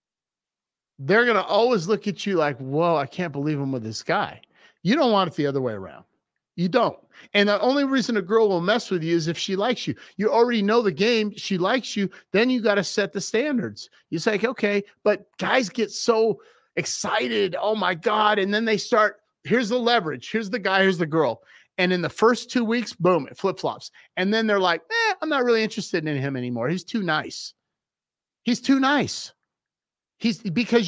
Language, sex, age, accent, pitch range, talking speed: English, male, 30-49, American, 155-225 Hz, 210 wpm